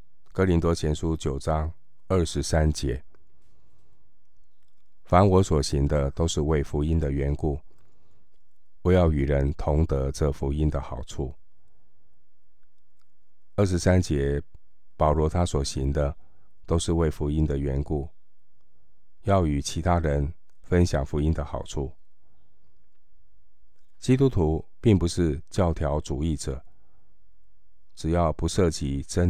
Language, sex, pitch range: Chinese, male, 70-85 Hz